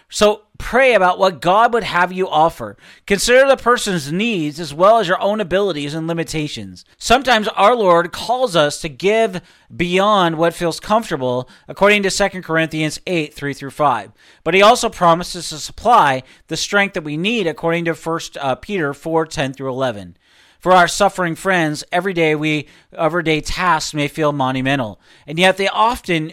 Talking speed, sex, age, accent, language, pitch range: 165 wpm, male, 40-59, American, English, 150-200 Hz